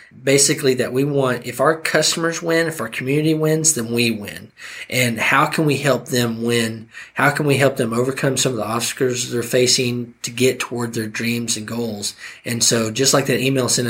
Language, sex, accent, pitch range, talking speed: English, male, American, 115-130 Hz, 205 wpm